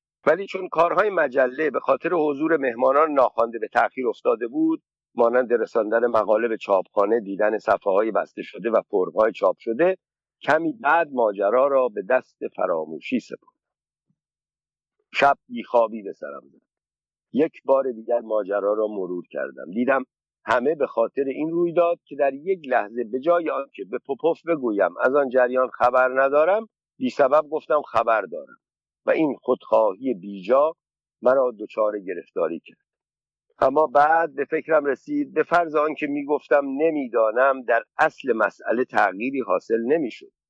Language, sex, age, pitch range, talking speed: Persian, male, 50-69, 125-195 Hz, 145 wpm